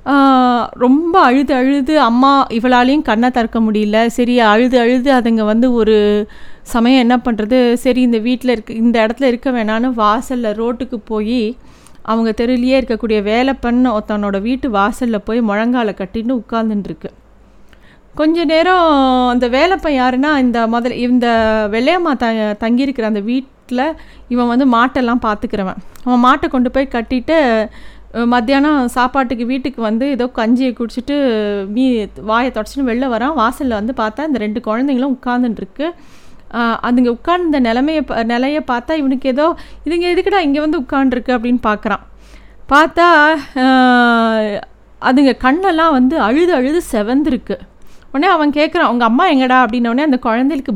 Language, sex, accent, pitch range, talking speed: Tamil, female, native, 225-275 Hz, 130 wpm